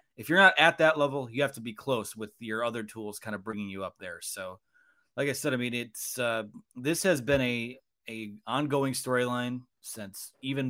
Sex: male